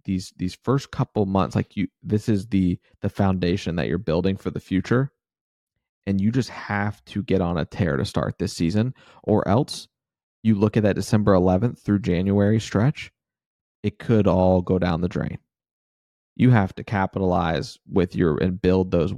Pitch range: 90-105 Hz